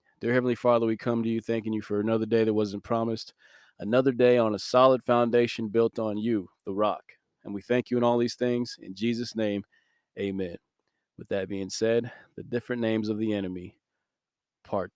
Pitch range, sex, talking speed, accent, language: 100-120 Hz, male, 195 wpm, American, English